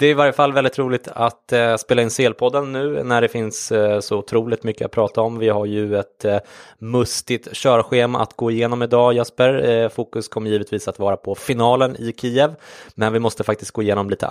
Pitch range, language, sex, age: 105-120 Hz, English, male, 20-39